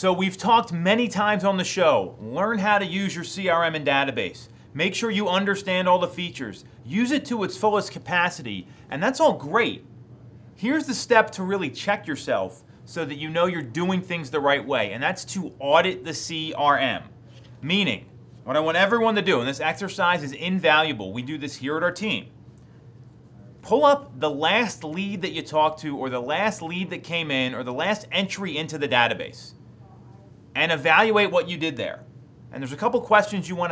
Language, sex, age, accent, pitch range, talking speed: English, male, 30-49, American, 140-200 Hz, 200 wpm